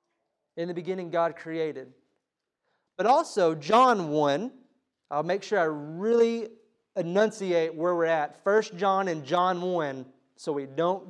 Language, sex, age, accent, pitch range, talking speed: English, male, 30-49, American, 150-200 Hz, 140 wpm